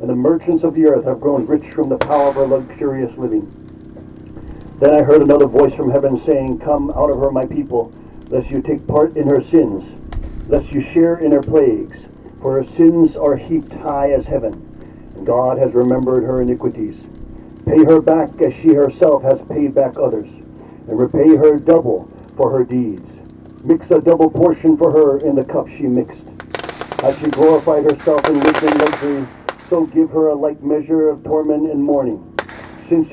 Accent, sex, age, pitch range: American, male, 50-69, 130-160 Hz